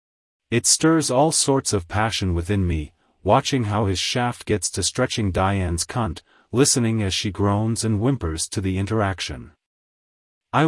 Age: 40-59